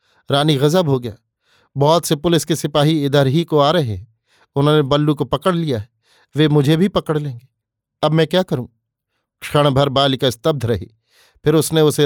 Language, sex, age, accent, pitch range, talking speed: Hindi, male, 50-69, native, 125-160 Hz, 190 wpm